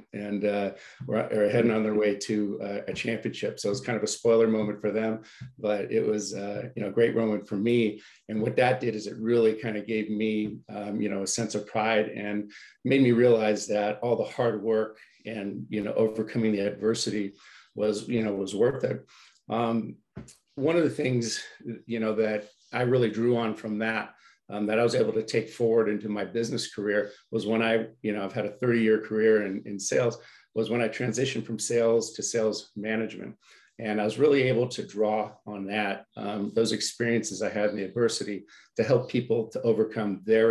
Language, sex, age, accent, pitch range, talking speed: English, male, 50-69, American, 105-115 Hz, 210 wpm